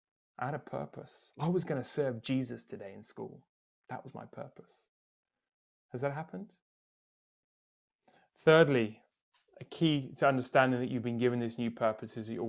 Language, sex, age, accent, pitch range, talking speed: English, male, 20-39, British, 115-140 Hz, 170 wpm